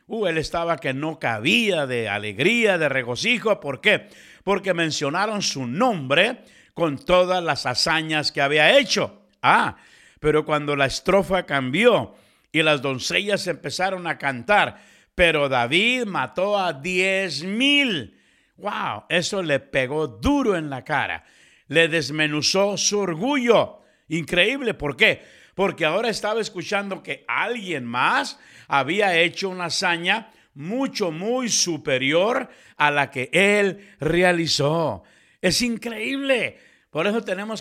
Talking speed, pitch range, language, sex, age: 125 wpm, 150-200 Hz, English, male, 60-79